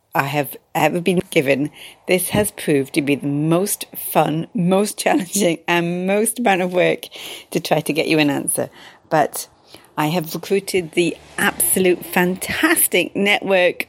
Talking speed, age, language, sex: 150 wpm, 40-59, English, female